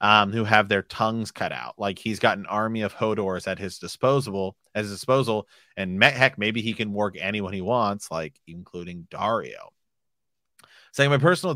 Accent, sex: American, male